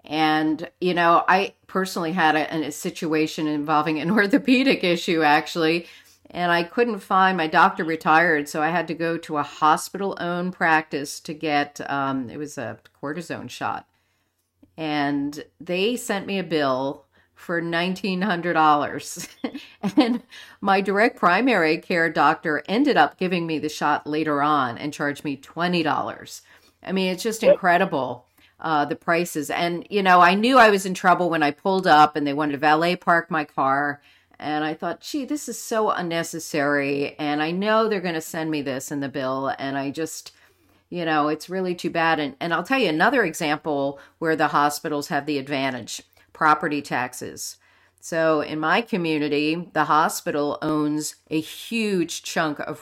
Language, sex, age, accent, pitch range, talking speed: English, female, 50-69, American, 150-180 Hz, 170 wpm